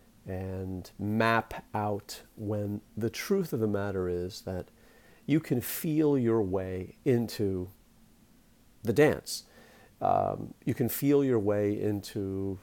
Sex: male